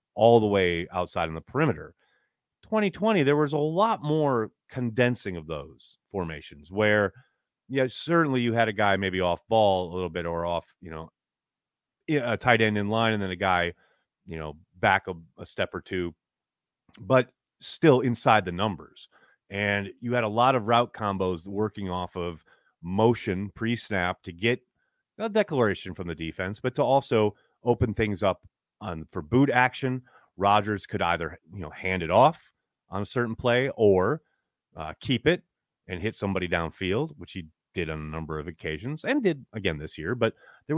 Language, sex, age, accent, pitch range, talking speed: English, male, 30-49, American, 90-125 Hz, 180 wpm